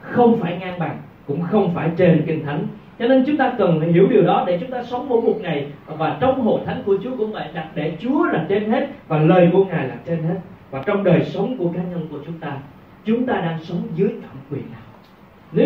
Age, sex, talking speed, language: 20-39, male, 255 wpm, Vietnamese